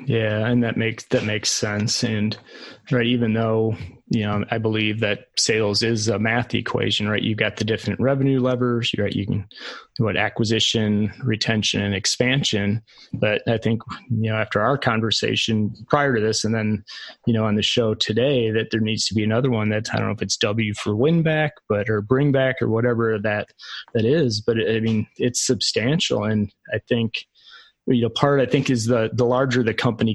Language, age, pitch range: English, 20-39, 110-125 Hz